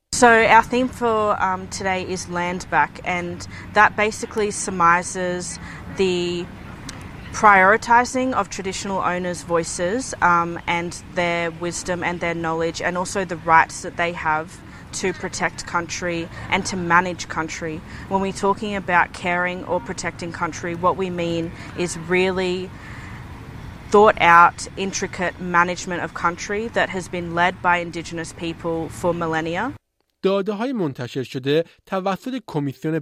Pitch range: 145-185 Hz